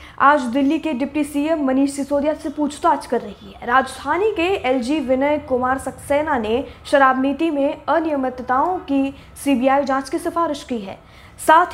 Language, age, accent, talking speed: Hindi, 20-39, native, 160 wpm